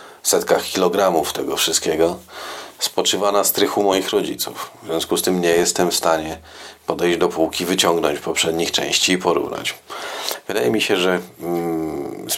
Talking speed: 145 wpm